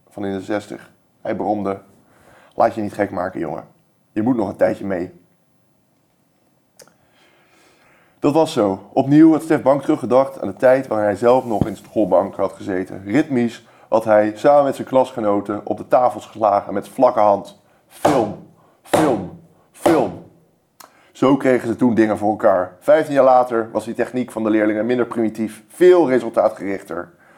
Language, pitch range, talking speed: Dutch, 105-130 Hz, 165 wpm